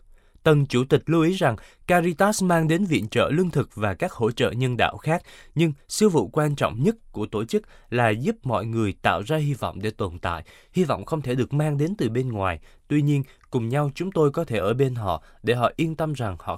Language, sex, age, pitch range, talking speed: Vietnamese, male, 20-39, 110-155 Hz, 245 wpm